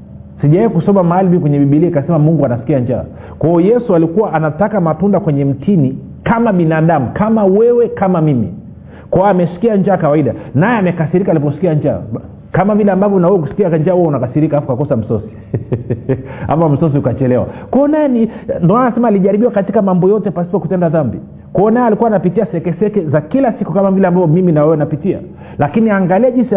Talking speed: 170 wpm